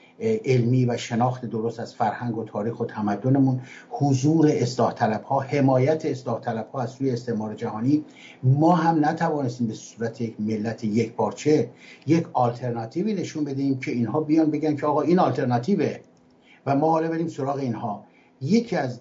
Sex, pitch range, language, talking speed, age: male, 120-165 Hz, English, 160 wpm, 60-79